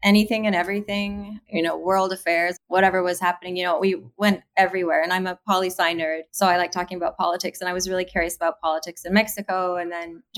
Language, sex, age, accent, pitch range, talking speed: English, female, 20-39, American, 190-225 Hz, 225 wpm